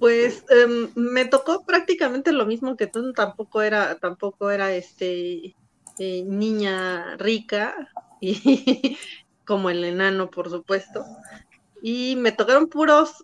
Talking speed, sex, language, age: 120 wpm, female, Spanish, 30-49